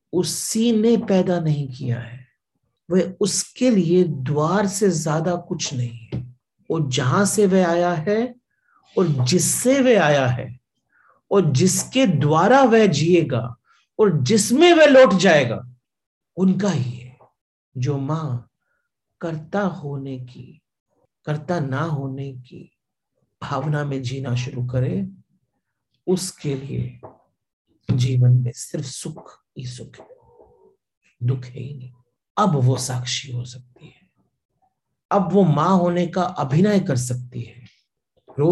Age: 50-69